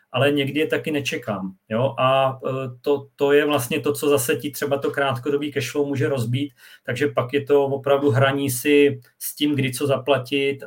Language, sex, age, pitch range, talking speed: Czech, male, 40-59, 130-145 Hz, 185 wpm